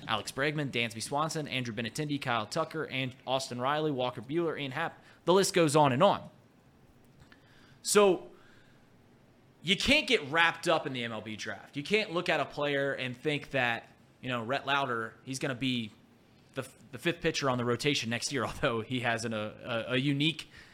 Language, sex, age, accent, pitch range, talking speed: English, male, 20-39, American, 120-165 Hz, 185 wpm